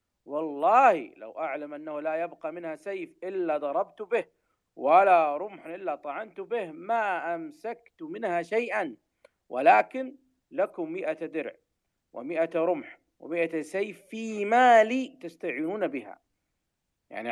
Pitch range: 155-230 Hz